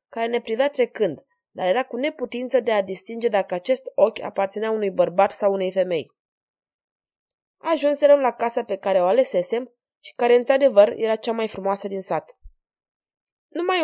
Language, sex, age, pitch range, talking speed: Romanian, female, 20-39, 195-260 Hz, 160 wpm